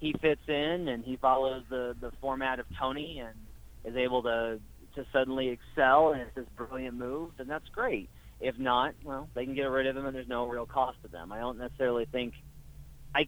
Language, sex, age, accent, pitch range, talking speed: English, male, 30-49, American, 115-135 Hz, 210 wpm